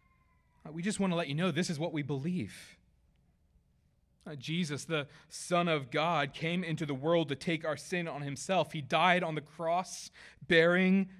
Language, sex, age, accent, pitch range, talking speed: English, male, 20-39, American, 105-160 Hz, 175 wpm